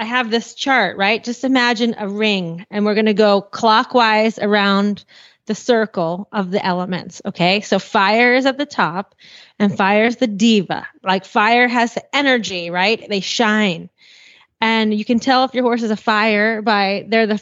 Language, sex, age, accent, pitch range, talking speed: English, female, 30-49, American, 195-235 Hz, 185 wpm